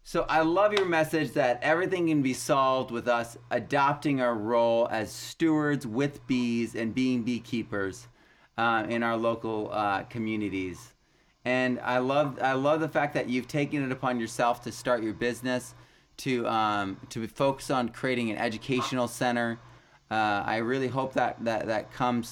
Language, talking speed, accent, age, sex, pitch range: English, 165 wpm, American, 30-49, male, 115-140 Hz